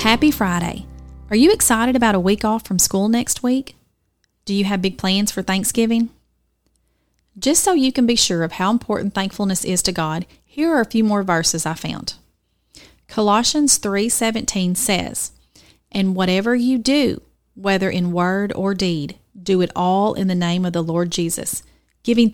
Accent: American